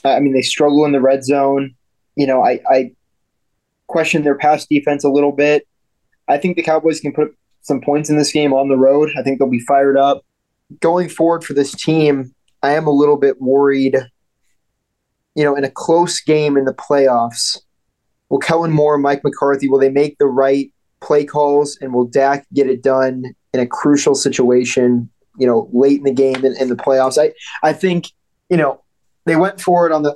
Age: 20-39